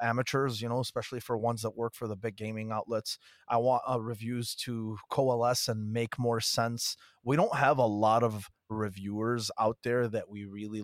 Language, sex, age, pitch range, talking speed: English, male, 20-39, 100-115 Hz, 195 wpm